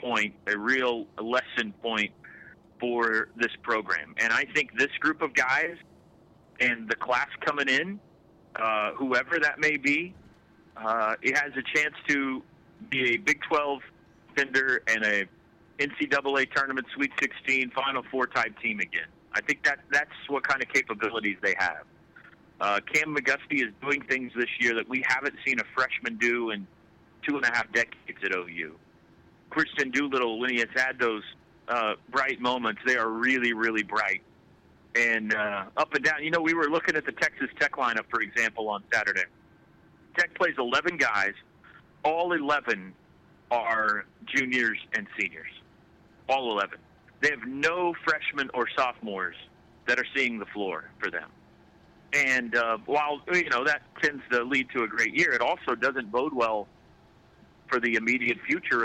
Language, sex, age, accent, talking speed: English, male, 40-59, American, 165 wpm